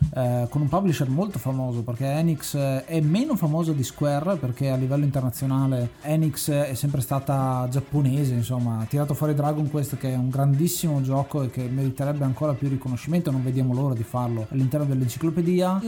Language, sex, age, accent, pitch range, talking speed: Italian, male, 30-49, native, 135-160 Hz, 175 wpm